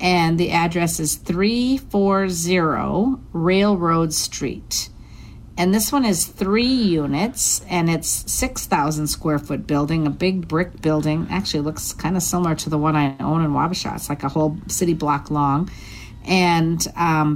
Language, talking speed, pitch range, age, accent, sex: English, 150 wpm, 145-180 Hz, 50-69, American, female